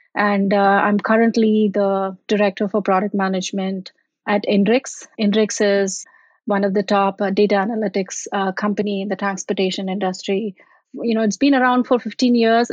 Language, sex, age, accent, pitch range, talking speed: English, female, 30-49, Indian, 195-225 Hz, 155 wpm